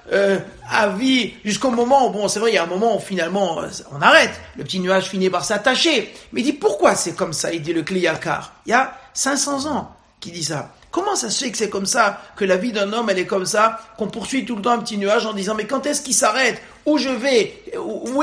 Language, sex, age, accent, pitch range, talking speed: French, male, 50-69, French, 195-275 Hz, 260 wpm